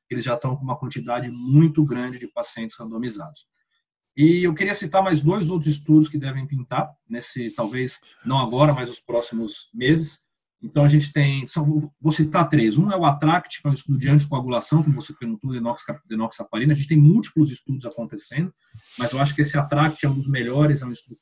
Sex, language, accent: male, Portuguese, Brazilian